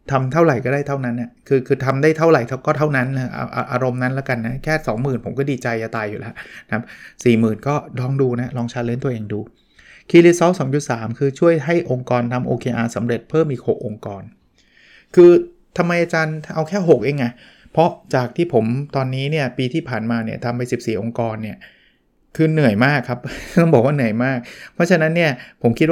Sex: male